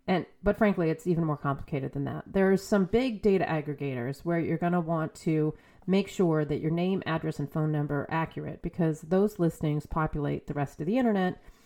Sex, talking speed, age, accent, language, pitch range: female, 205 wpm, 30-49, American, English, 150-190 Hz